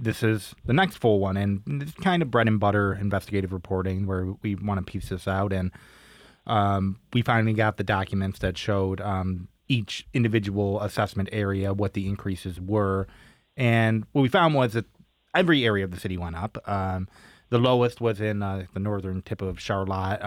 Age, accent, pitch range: 20-39, American, 95-115 Hz